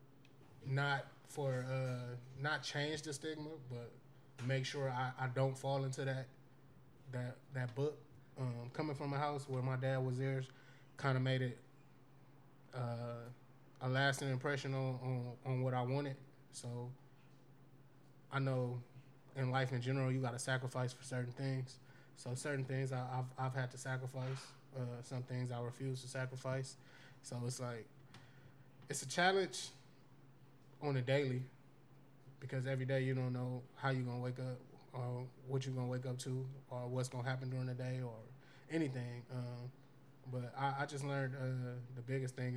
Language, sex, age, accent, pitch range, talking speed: English, male, 20-39, American, 125-135 Hz, 170 wpm